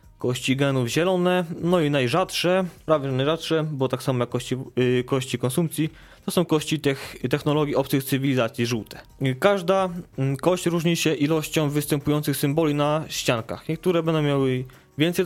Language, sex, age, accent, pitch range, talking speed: Polish, male, 20-39, native, 130-165 Hz, 155 wpm